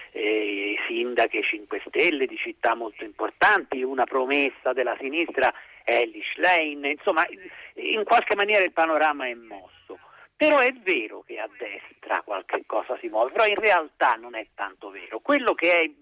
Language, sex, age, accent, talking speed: Italian, male, 50-69, native, 155 wpm